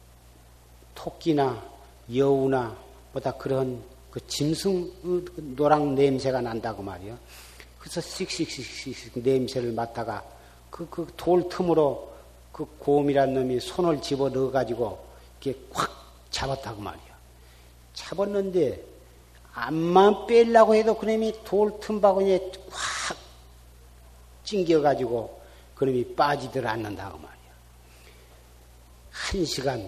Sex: male